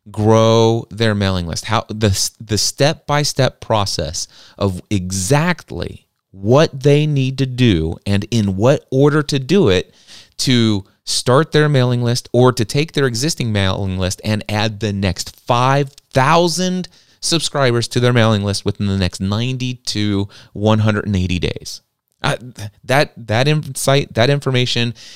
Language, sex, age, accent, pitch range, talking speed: English, male, 30-49, American, 105-135 Hz, 140 wpm